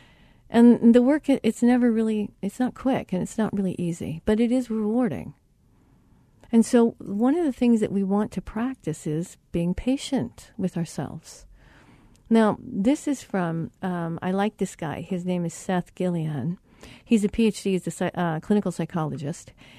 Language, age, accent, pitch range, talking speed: English, 50-69, American, 180-235 Hz, 170 wpm